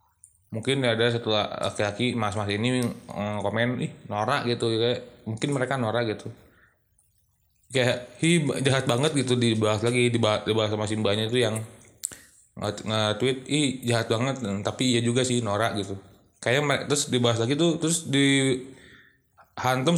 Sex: male